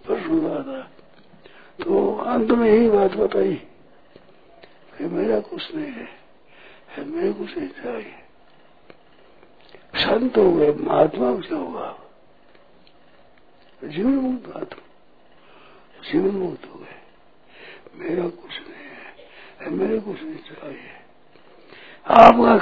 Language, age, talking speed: Hindi, 60-79, 110 wpm